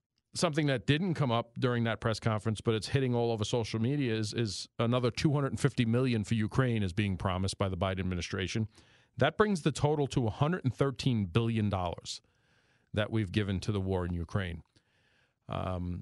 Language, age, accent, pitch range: English, 40-59, American, 105-135 Hz